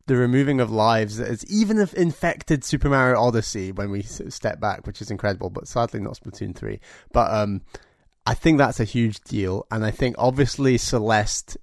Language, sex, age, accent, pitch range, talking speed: English, male, 20-39, British, 100-120 Hz, 185 wpm